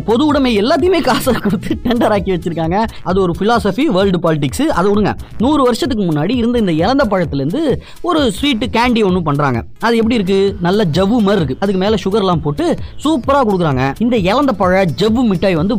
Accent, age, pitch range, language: native, 20-39, 175-245 Hz, Tamil